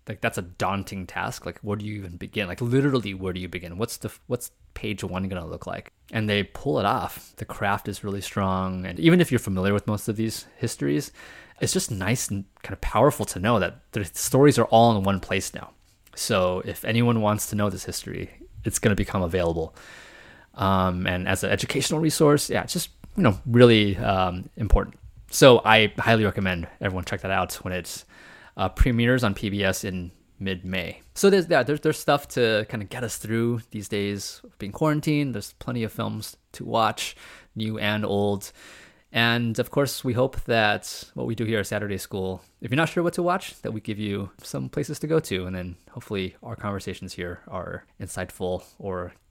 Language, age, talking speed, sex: English, 20-39, 205 wpm, male